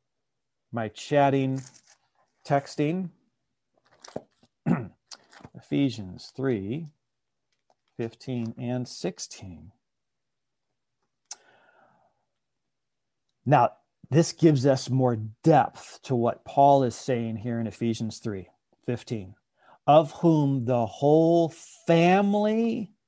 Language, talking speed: English, 70 wpm